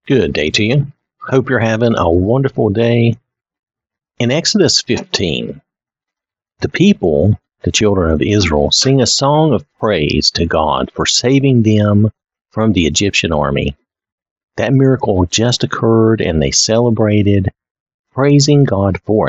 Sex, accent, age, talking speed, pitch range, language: male, American, 50-69, 135 wpm, 85-125 Hz, English